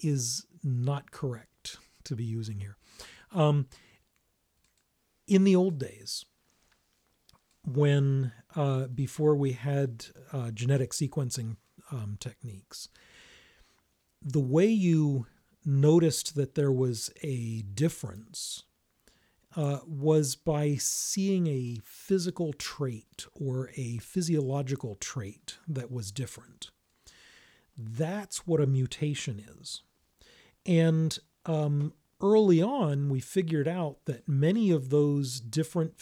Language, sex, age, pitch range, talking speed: English, male, 40-59, 125-160 Hz, 105 wpm